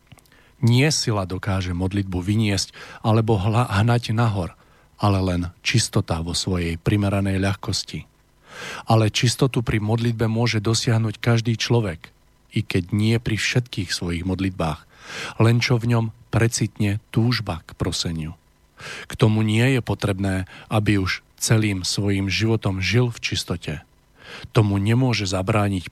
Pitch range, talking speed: 95-115 Hz, 125 wpm